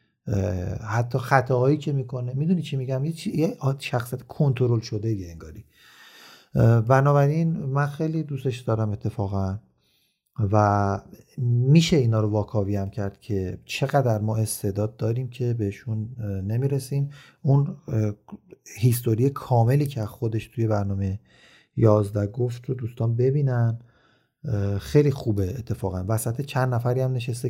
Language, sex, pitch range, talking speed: Persian, male, 105-135 Hz, 120 wpm